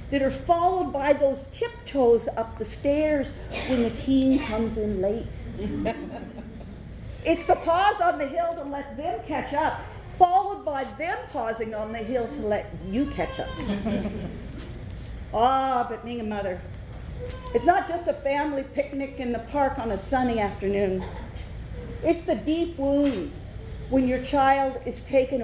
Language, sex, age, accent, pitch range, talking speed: English, female, 50-69, American, 220-310 Hz, 155 wpm